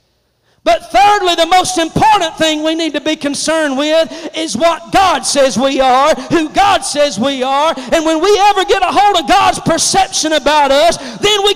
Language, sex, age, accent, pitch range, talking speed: English, male, 40-59, American, 325-425 Hz, 190 wpm